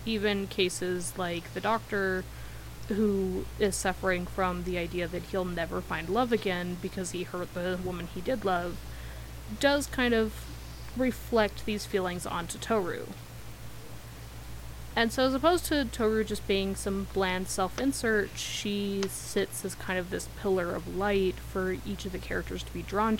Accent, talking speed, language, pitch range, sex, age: American, 160 wpm, English, 170-210 Hz, female, 20-39